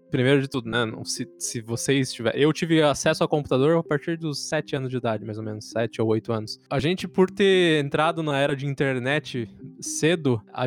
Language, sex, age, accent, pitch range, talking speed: Portuguese, male, 20-39, Brazilian, 125-165 Hz, 215 wpm